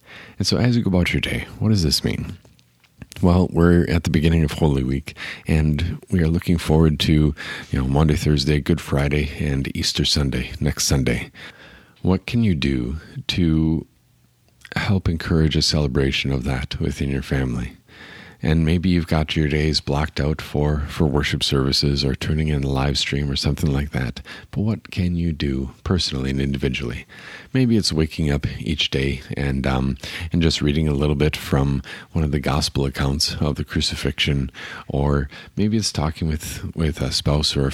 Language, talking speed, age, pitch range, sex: English, 180 wpm, 40-59, 70-85 Hz, male